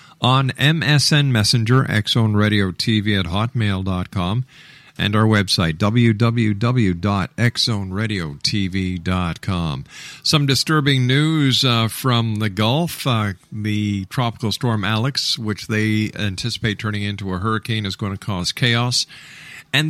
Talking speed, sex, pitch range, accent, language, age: 110 wpm, male, 105-135 Hz, American, English, 50-69